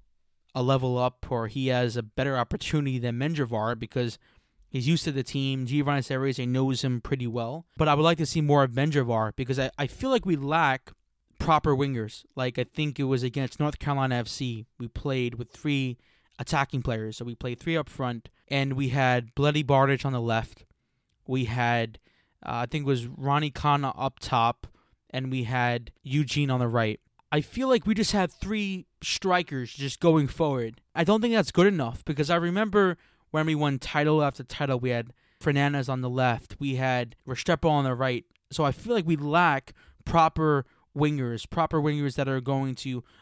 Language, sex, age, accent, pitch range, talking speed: English, male, 20-39, American, 120-150 Hz, 195 wpm